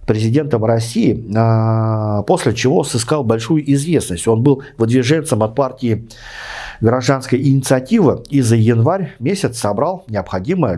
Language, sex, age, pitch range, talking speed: Russian, male, 50-69, 110-145 Hz, 110 wpm